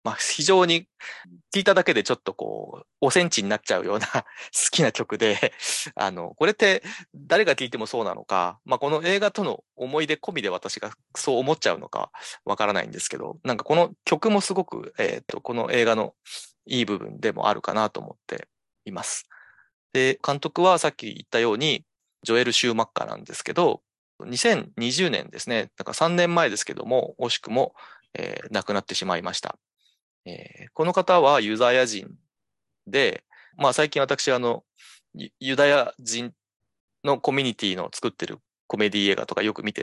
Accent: native